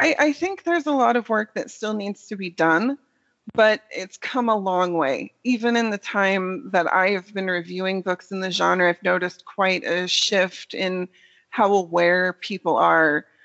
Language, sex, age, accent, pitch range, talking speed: English, female, 30-49, American, 180-215 Hz, 185 wpm